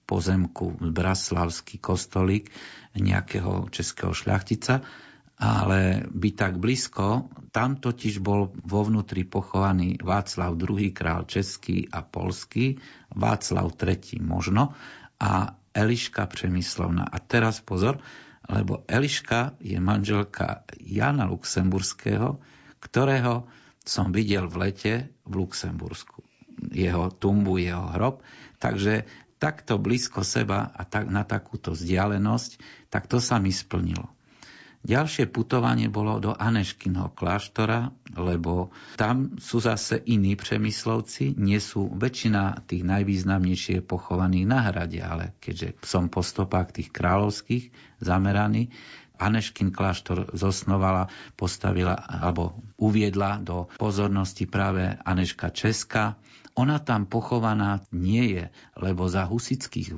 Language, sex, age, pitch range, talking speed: Slovak, male, 50-69, 95-115 Hz, 110 wpm